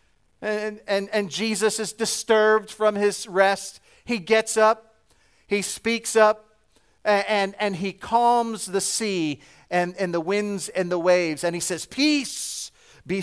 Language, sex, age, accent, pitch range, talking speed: English, male, 40-59, American, 175-215 Hz, 155 wpm